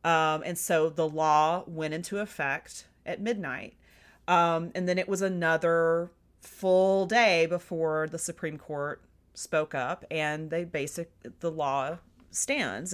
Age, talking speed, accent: 30-49, 140 wpm, American